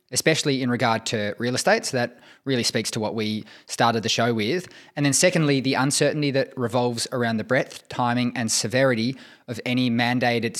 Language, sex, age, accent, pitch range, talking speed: English, male, 20-39, Australian, 115-140 Hz, 185 wpm